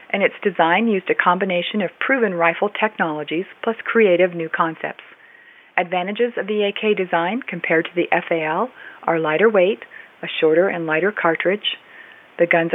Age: 40-59